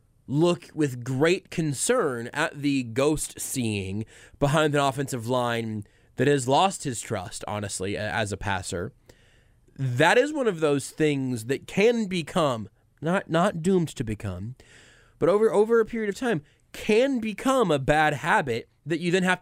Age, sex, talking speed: 20-39, male, 160 wpm